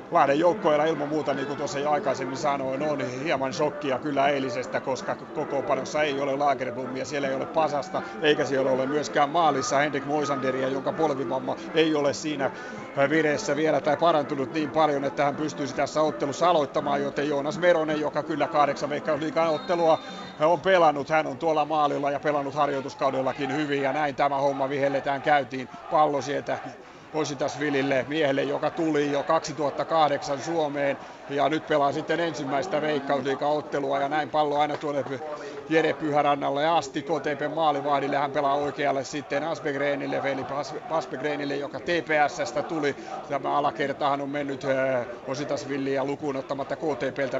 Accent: native